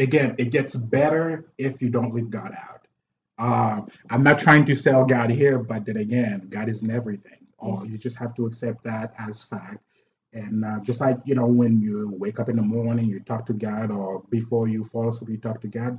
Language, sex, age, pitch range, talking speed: English, male, 30-49, 105-125 Hz, 220 wpm